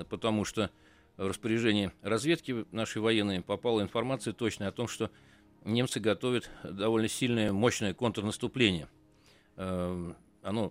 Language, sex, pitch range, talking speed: Russian, male, 90-115 Hz, 110 wpm